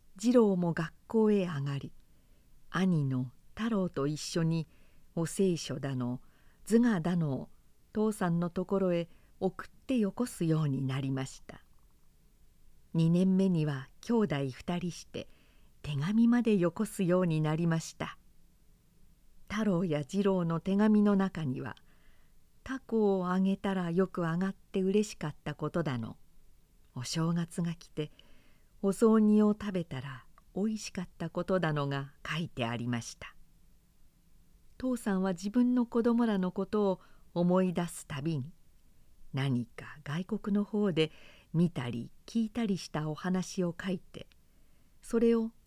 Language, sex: Japanese, female